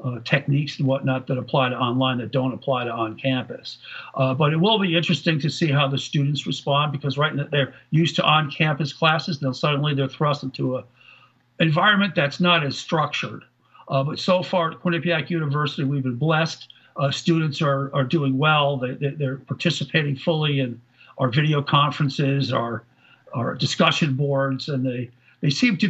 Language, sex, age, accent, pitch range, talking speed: English, male, 60-79, American, 130-160 Hz, 190 wpm